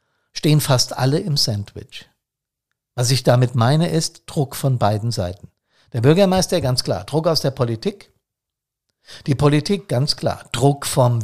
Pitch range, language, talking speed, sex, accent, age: 120-150 Hz, German, 150 wpm, male, German, 50-69